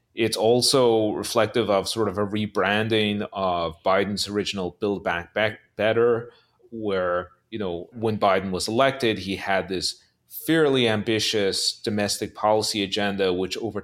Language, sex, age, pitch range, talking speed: English, male, 30-49, 95-115 Hz, 140 wpm